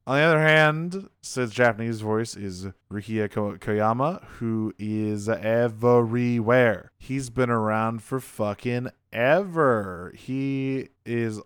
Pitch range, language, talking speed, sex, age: 105-135 Hz, English, 110 wpm, male, 20-39